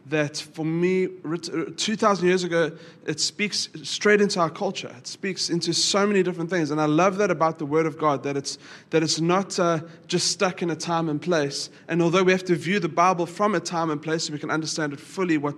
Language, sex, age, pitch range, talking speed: English, male, 20-39, 155-185 Hz, 235 wpm